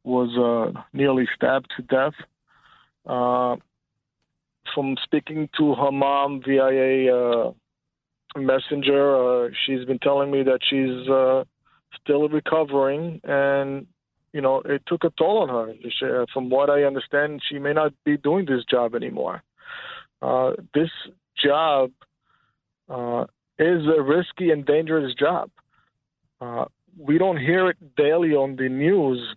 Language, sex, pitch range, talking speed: English, male, 130-150 Hz, 140 wpm